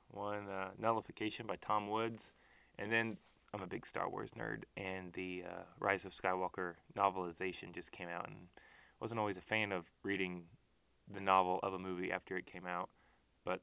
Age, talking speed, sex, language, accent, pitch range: 20-39, 185 wpm, male, English, American, 90-115 Hz